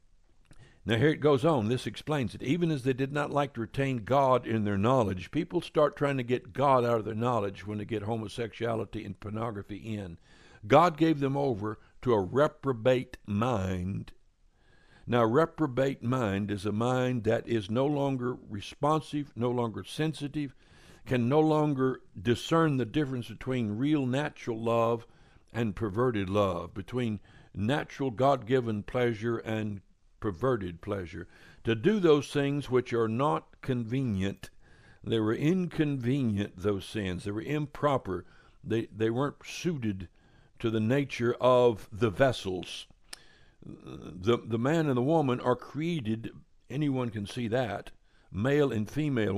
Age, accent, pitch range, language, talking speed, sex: 60-79, American, 110-135 Hz, English, 145 wpm, male